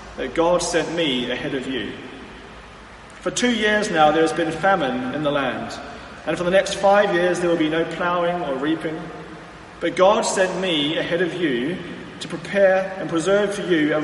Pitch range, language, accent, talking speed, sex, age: 160-195 Hz, English, British, 190 wpm, male, 30-49